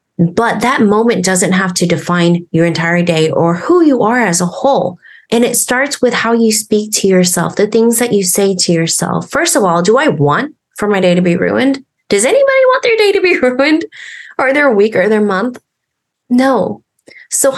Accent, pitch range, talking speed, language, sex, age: American, 180-235 Hz, 210 wpm, English, female, 30-49